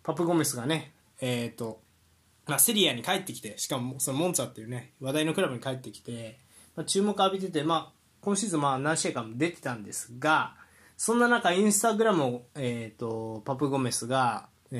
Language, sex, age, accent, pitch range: Japanese, male, 20-39, native, 125-190 Hz